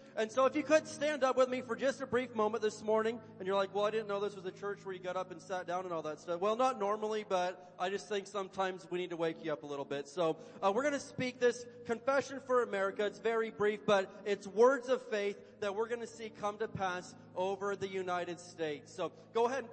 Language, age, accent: English, 40-59, American